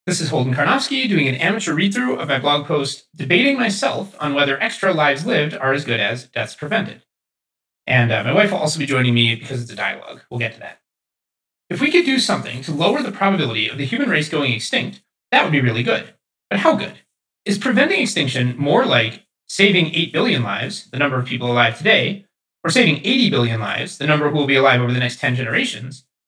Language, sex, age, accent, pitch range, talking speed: English, male, 30-49, American, 140-210 Hz, 220 wpm